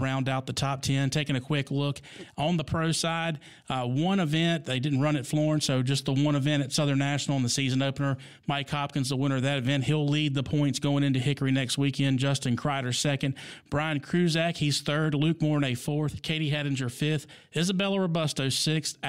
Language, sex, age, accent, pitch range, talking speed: English, male, 40-59, American, 140-165 Hz, 205 wpm